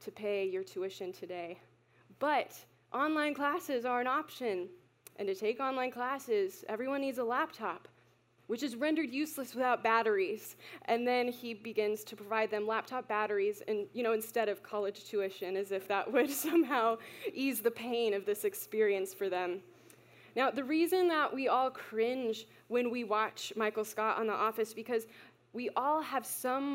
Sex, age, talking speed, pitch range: female, 20-39, 170 wpm, 210-260 Hz